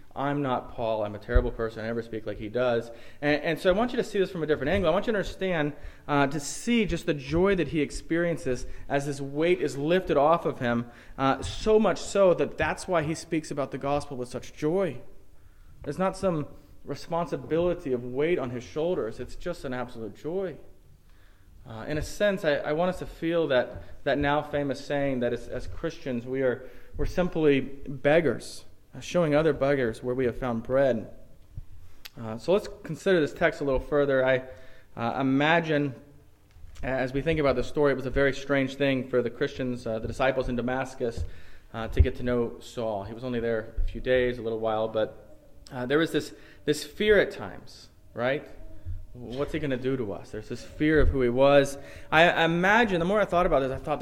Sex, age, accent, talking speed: male, 30-49, American, 215 wpm